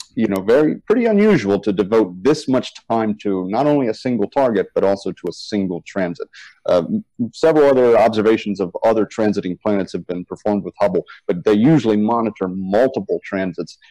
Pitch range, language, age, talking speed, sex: 100-135 Hz, English, 40-59, 175 wpm, male